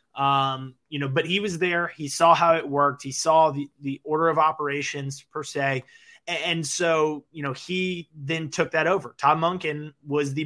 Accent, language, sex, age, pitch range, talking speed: American, English, male, 20-39, 140-155 Hz, 195 wpm